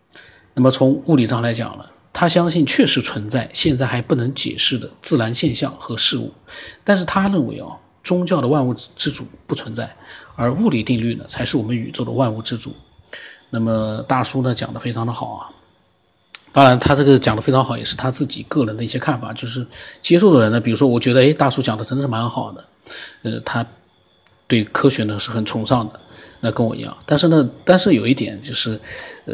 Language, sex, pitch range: Chinese, male, 115-150 Hz